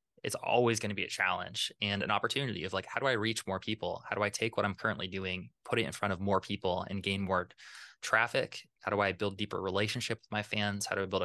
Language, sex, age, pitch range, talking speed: English, male, 20-39, 95-110 Hz, 265 wpm